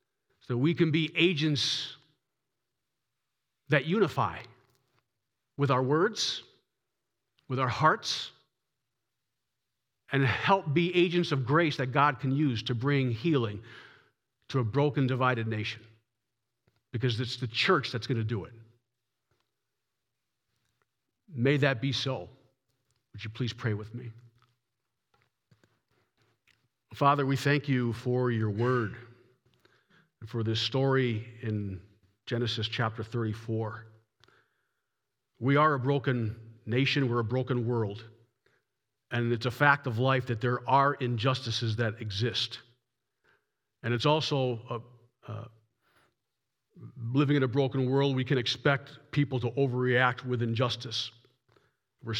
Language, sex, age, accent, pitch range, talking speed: English, male, 50-69, American, 115-135 Hz, 120 wpm